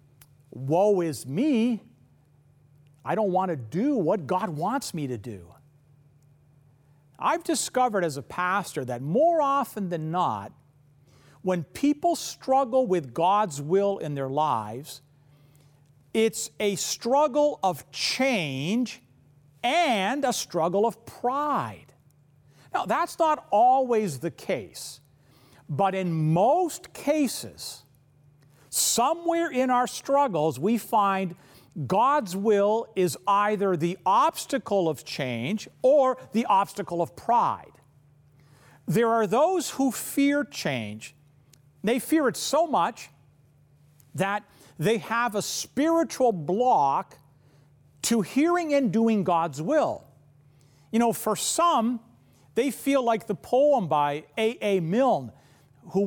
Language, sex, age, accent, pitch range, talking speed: English, male, 50-69, American, 145-235 Hz, 115 wpm